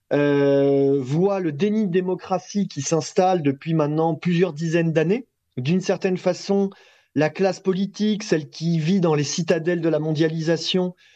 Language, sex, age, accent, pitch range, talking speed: French, male, 30-49, French, 155-200 Hz, 150 wpm